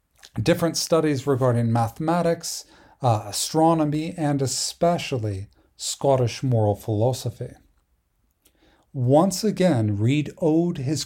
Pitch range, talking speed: 125-160 Hz, 85 wpm